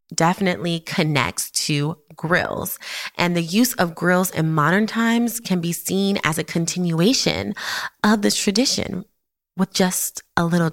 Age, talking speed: 20-39, 140 wpm